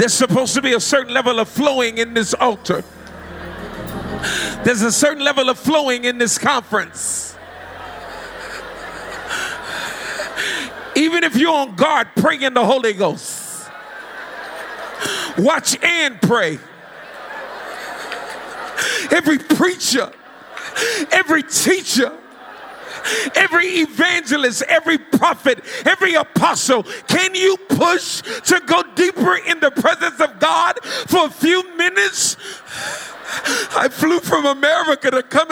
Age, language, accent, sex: 40-59, English, American, male